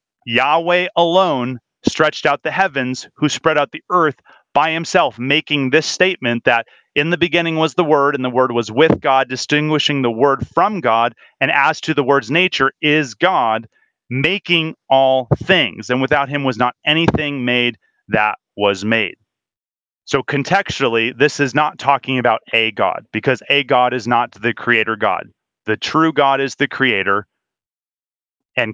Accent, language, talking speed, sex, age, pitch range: American, English, 165 wpm, male, 30-49, 115-145 Hz